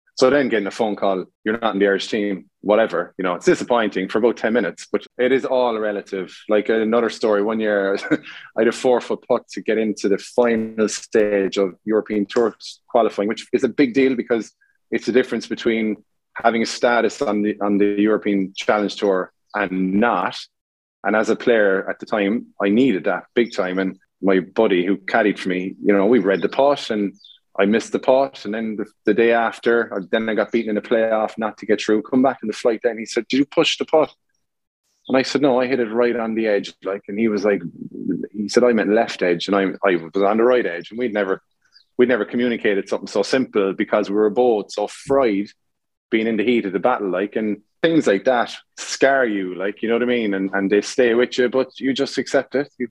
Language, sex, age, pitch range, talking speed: English, male, 20-39, 100-125 Hz, 235 wpm